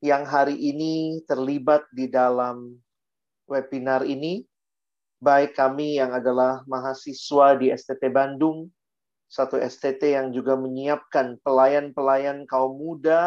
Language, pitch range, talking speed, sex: Indonesian, 135-170 Hz, 110 wpm, male